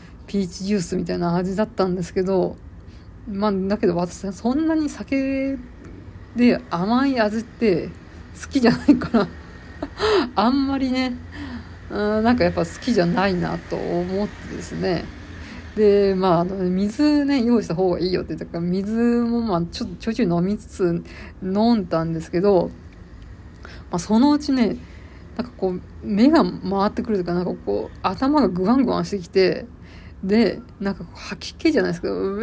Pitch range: 180-235 Hz